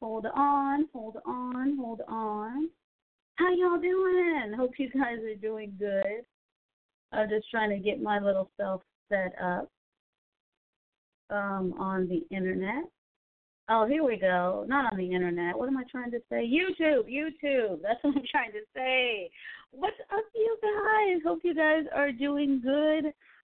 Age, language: 30-49, English